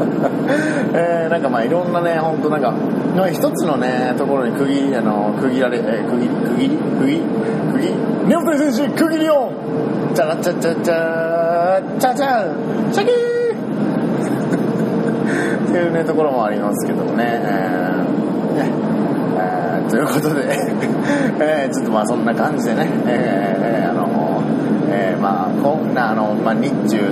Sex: male